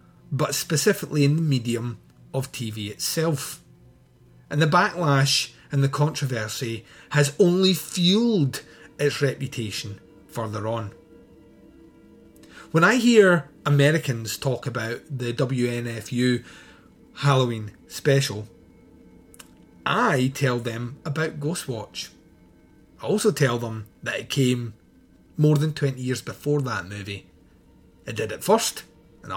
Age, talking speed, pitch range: 30-49, 110 wpm, 120-155 Hz